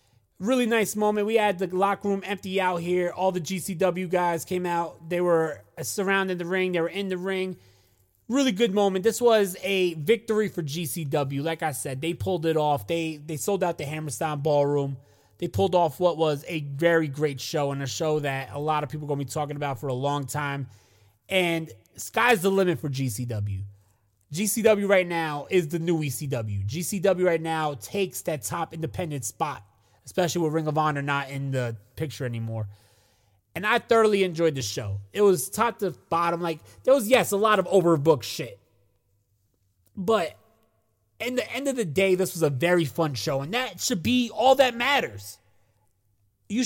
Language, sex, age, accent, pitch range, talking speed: English, male, 20-39, American, 125-195 Hz, 195 wpm